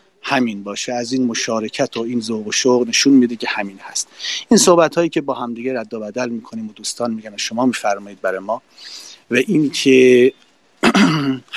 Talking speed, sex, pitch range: 180 wpm, male, 120-150 Hz